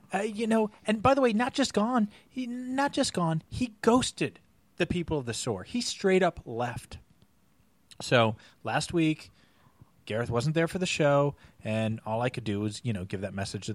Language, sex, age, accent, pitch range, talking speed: English, male, 30-49, American, 125-200 Hz, 200 wpm